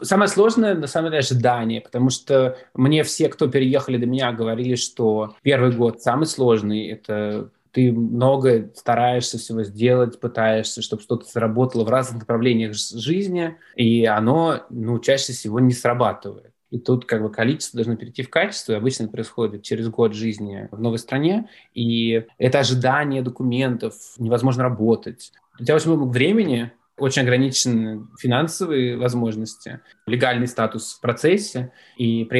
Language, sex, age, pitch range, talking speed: Russian, male, 20-39, 115-135 Hz, 150 wpm